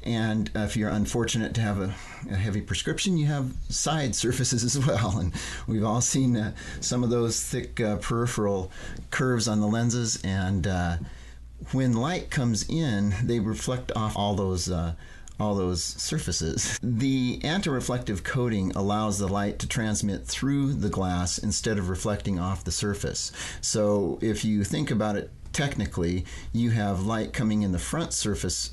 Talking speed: 160 wpm